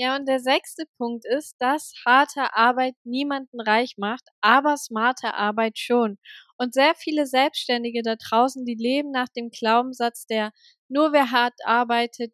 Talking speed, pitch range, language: 155 wpm, 225-270 Hz, German